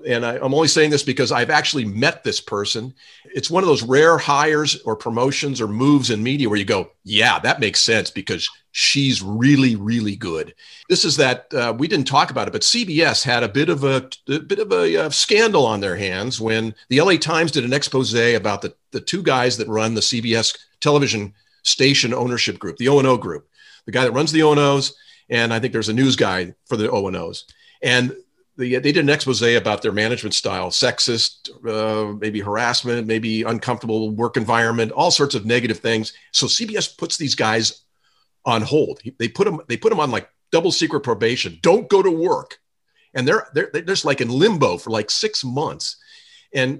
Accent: American